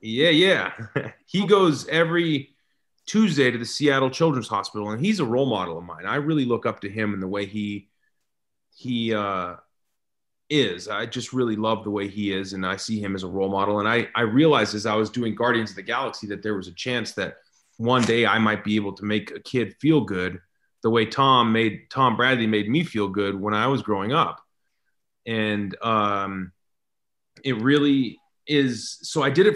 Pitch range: 105-135 Hz